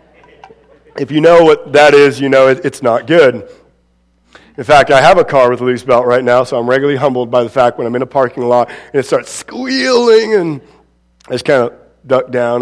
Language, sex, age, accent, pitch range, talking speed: English, male, 40-59, American, 115-170 Hz, 225 wpm